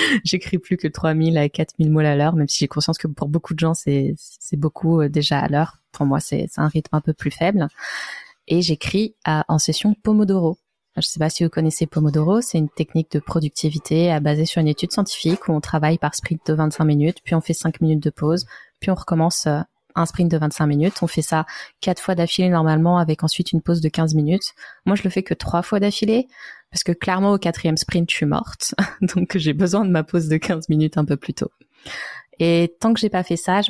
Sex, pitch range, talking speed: female, 155-175 Hz, 240 wpm